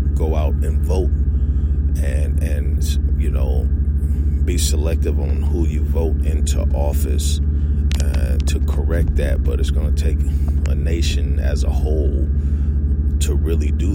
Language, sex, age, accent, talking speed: English, male, 30-49, American, 140 wpm